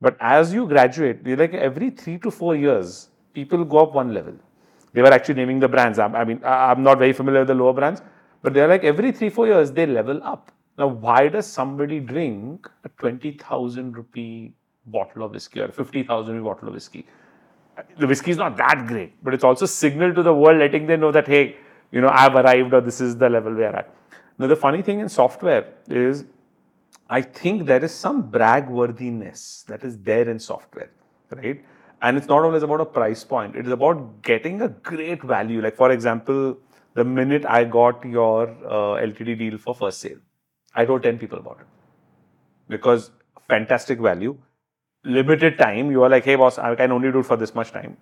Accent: Indian